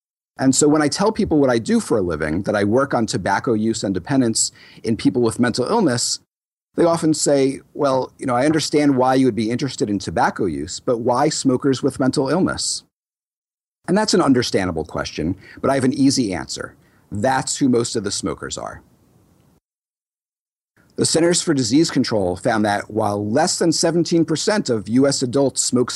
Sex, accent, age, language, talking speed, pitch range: male, American, 50-69, English, 185 wpm, 110-150 Hz